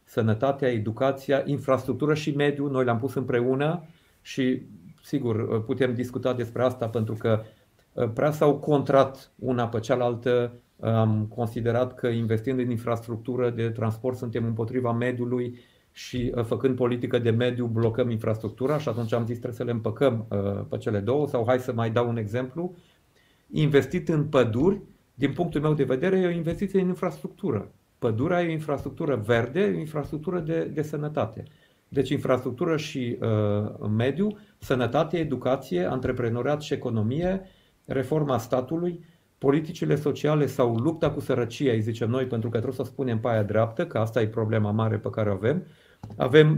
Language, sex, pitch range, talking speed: Romanian, male, 120-150 Hz, 155 wpm